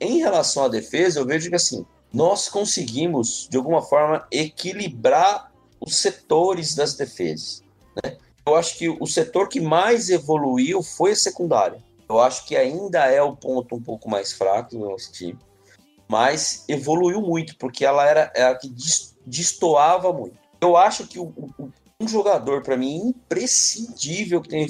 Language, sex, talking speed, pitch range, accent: Portuguese, male, 165 wpm, 140-195 Hz, Brazilian